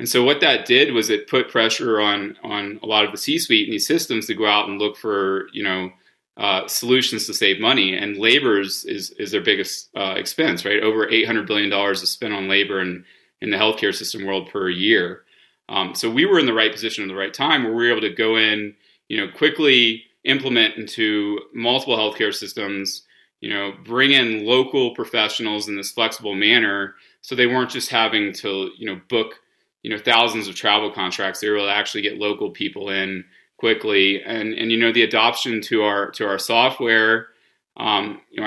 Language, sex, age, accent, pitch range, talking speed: English, male, 30-49, American, 100-115 Hz, 205 wpm